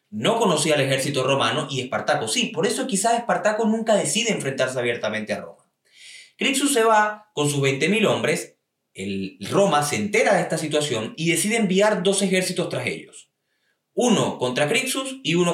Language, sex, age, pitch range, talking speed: Spanish, male, 20-39, 145-205 Hz, 170 wpm